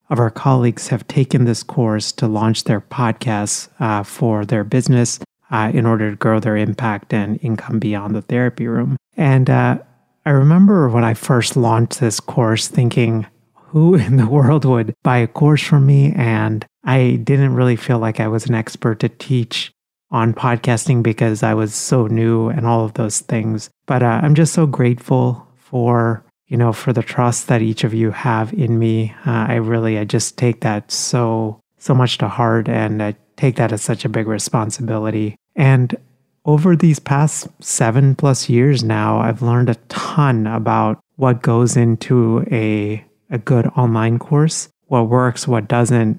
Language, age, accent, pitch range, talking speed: English, 30-49, American, 110-130 Hz, 180 wpm